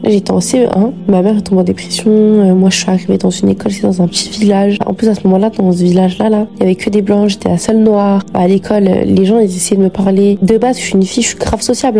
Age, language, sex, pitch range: 20-39, French, female, 180-210 Hz